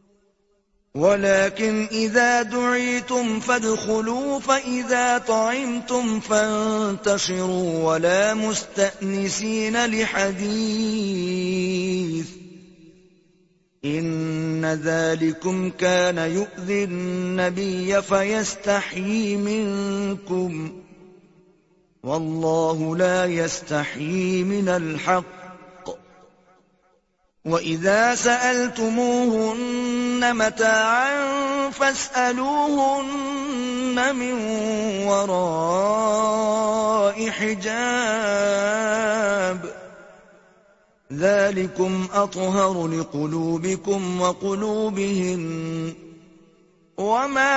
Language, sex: Urdu, male